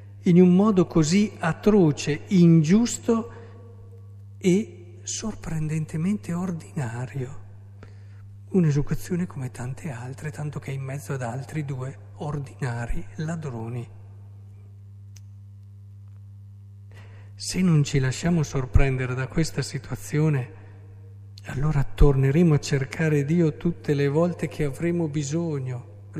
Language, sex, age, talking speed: Italian, male, 50-69, 100 wpm